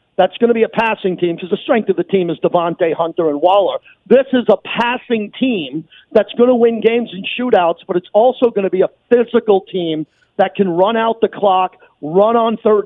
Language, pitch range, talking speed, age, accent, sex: English, 185-230 Hz, 225 wpm, 50-69, American, male